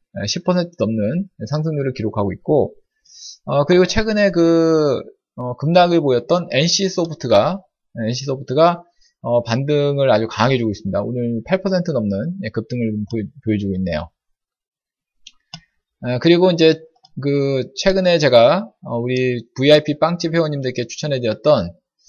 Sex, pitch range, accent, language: male, 120-180 Hz, native, Korean